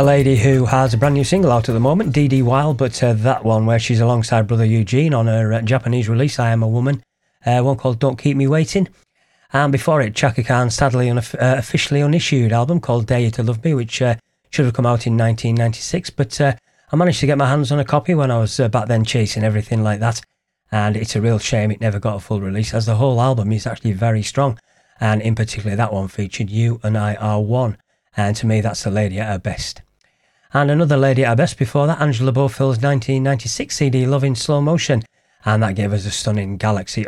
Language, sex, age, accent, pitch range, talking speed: English, male, 30-49, British, 110-135 Hz, 235 wpm